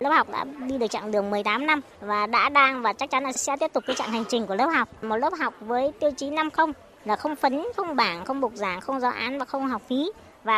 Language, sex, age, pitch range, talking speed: Vietnamese, male, 20-39, 205-265 Hz, 285 wpm